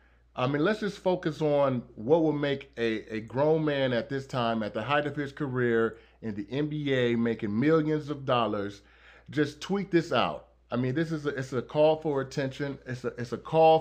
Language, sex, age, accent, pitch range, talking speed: English, male, 30-49, American, 120-155 Hz, 210 wpm